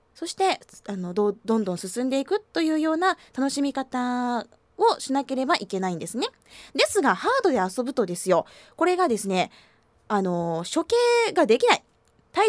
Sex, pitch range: female, 235-370 Hz